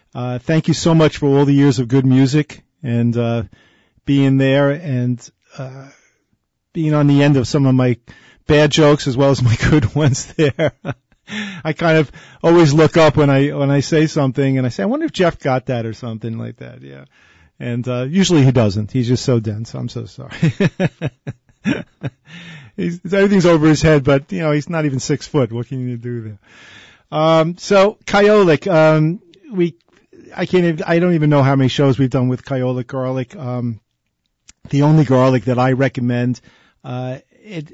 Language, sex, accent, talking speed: English, male, American, 190 wpm